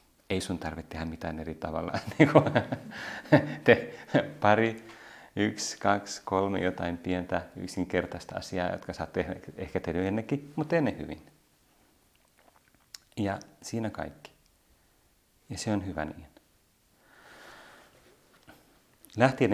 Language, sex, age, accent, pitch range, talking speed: Finnish, male, 30-49, native, 85-95 Hz, 110 wpm